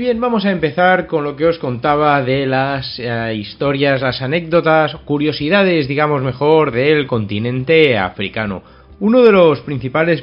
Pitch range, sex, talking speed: 105-140 Hz, male, 145 wpm